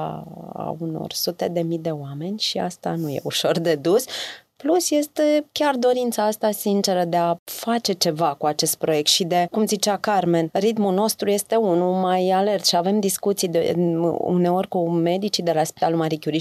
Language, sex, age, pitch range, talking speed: Romanian, female, 30-49, 170-220 Hz, 175 wpm